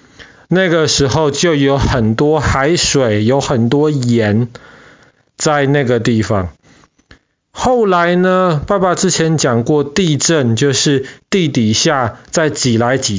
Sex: male